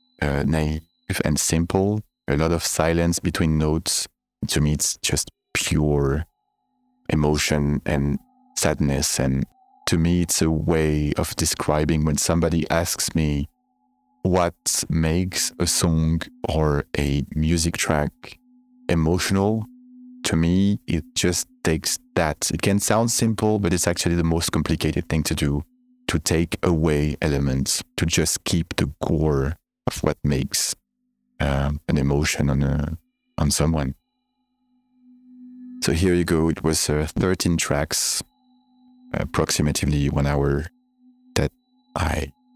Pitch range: 75-110 Hz